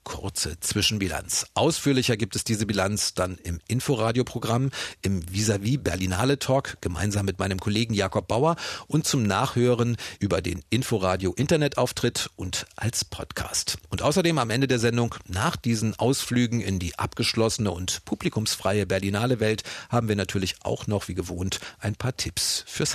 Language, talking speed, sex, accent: German, 145 wpm, male, German